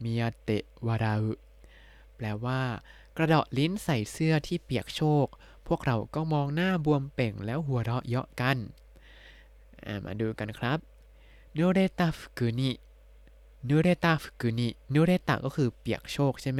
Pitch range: 120-150 Hz